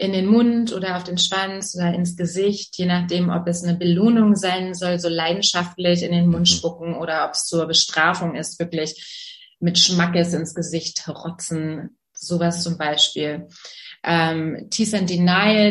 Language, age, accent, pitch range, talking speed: German, 30-49, German, 170-200 Hz, 165 wpm